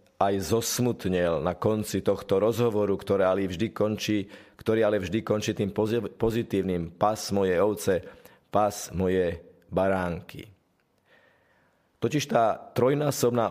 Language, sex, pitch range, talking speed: Slovak, male, 100-115 Hz, 105 wpm